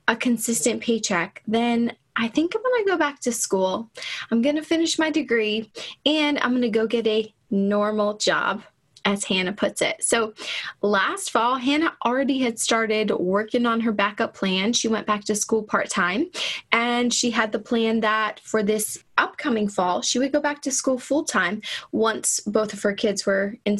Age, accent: 20-39, American